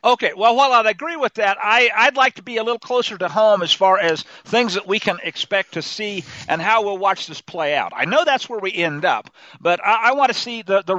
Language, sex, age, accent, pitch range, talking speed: English, male, 50-69, American, 185-245 Hz, 270 wpm